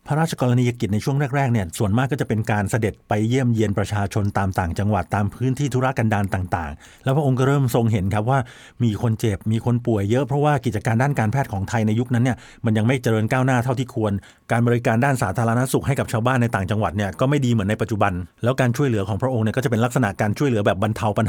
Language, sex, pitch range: Thai, male, 110-135 Hz